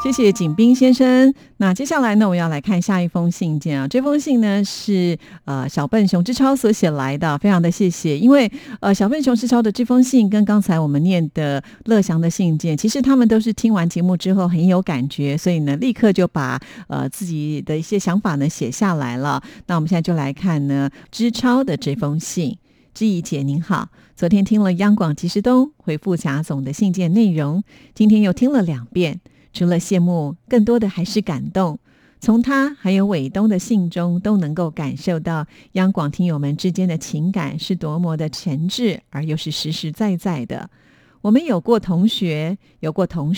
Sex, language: female, Japanese